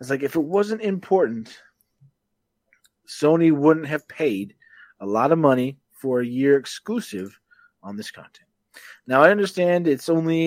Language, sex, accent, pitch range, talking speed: English, male, American, 125-155 Hz, 150 wpm